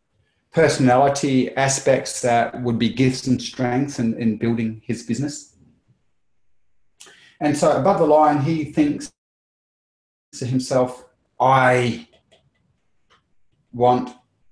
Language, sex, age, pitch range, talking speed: English, male, 30-49, 115-130 Hz, 95 wpm